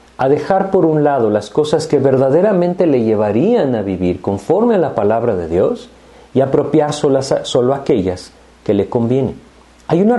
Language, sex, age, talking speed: Spanish, male, 50-69, 170 wpm